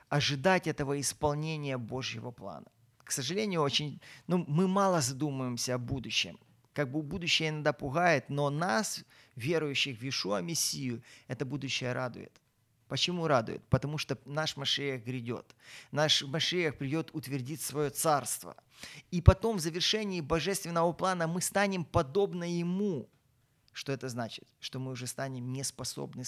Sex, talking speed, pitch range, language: male, 135 wpm, 125-160 Hz, Ukrainian